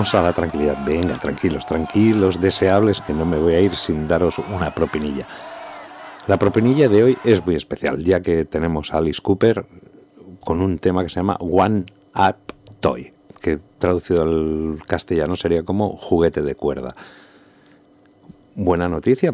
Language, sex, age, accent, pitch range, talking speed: Spanish, male, 60-79, Spanish, 85-110 Hz, 155 wpm